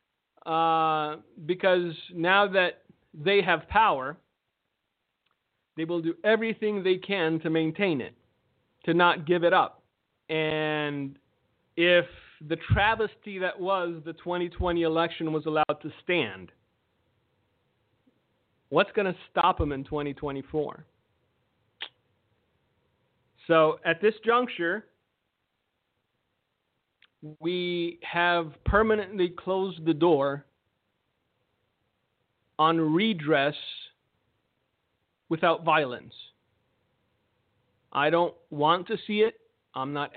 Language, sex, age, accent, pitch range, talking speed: English, male, 40-59, American, 140-175 Hz, 95 wpm